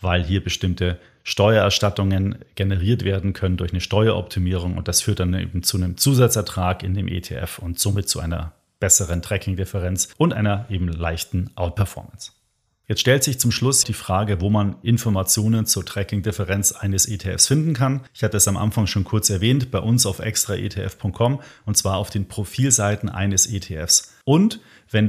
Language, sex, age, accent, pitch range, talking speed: German, male, 40-59, German, 95-115 Hz, 165 wpm